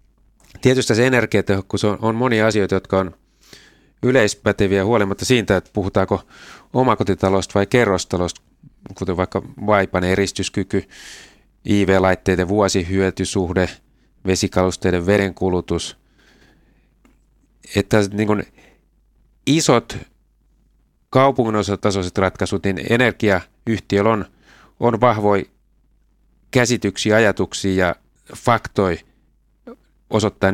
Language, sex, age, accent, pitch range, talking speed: Finnish, male, 30-49, native, 90-105 Hz, 75 wpm